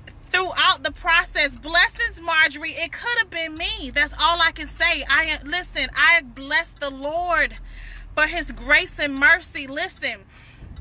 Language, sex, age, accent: English, female, 30-49, American